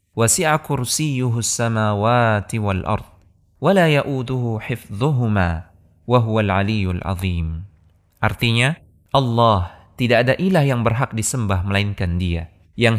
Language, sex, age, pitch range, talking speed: Indonesian, male, 20-39, 100-140 Hz, 55 wpm